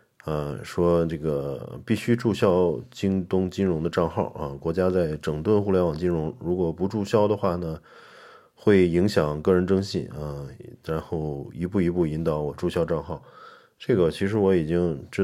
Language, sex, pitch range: Chinese, male, 75-95 Hz